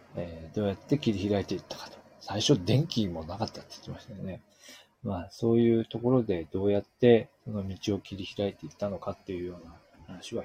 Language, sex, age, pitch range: Japanese, male, 40-59, 95-150 Hz